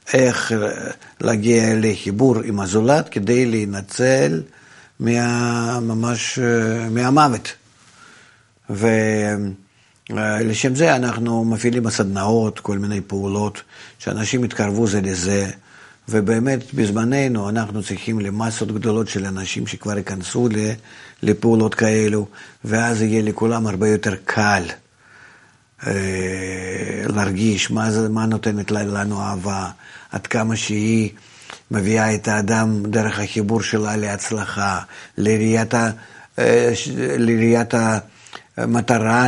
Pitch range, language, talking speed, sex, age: 105-120 Hz, Hebrew, 90 wpm, male, 50-69